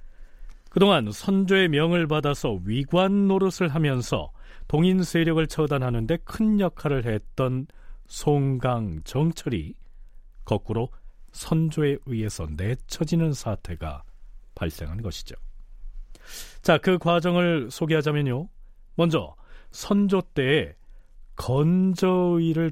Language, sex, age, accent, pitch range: Korean, male, 40-59, native, 115-165 Hz